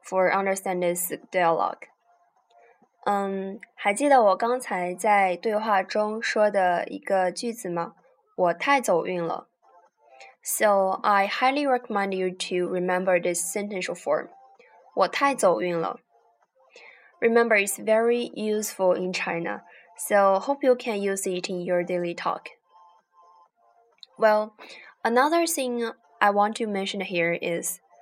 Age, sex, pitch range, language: 10-29, female, 180-240 Hz, Chinese